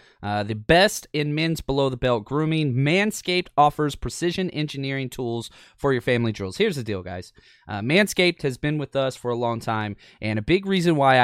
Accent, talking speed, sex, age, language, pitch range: American, 185 wpm, male, 20-39, English, 120-170 Hz